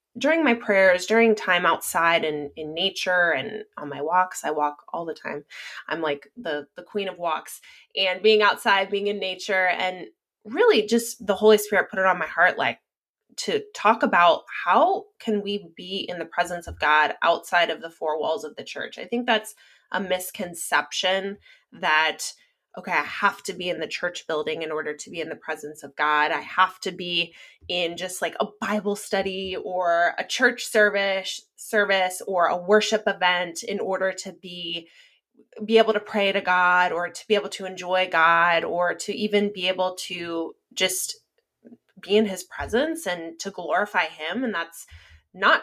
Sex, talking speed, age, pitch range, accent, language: female, 185 wpm, 20-39, 165-210 Hz, American, English